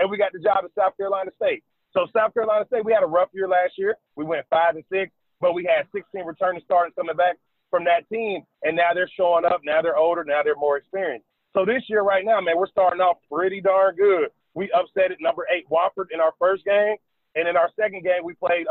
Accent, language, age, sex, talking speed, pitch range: American, English, 30-49, male, 245 wpm, 170-200 Hz